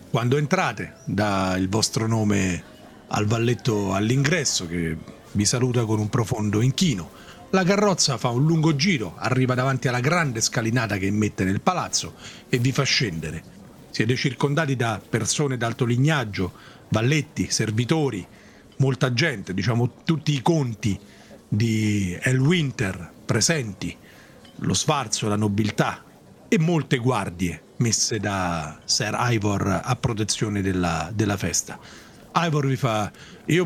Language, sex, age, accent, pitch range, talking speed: Italian, male, 40-59, native, 105-140 Hz, 130 wpm